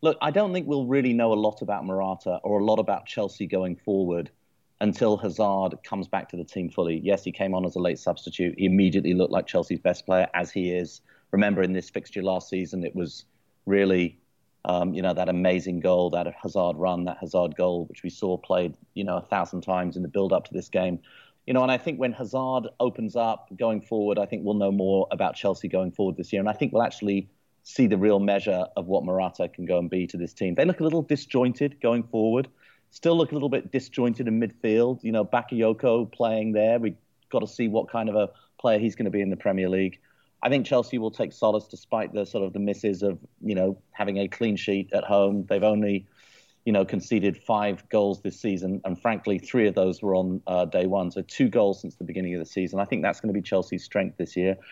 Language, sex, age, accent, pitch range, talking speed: English, male, 30-49, British, 95-115 Hz, 240 wpm